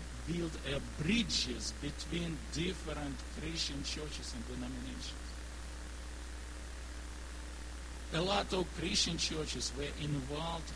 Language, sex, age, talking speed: English, male, 60-79, 85 wpm